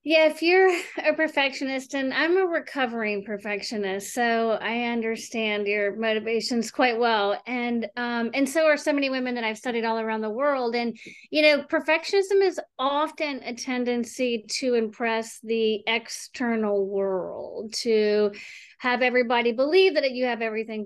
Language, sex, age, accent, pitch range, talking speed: English, female, 30-49, American, 225-285 Hz, 150 wpm